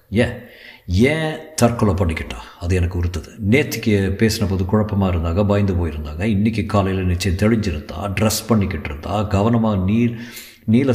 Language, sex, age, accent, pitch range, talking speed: Tamil, male, 50-69, native, 90-105 Hz, 115 wpm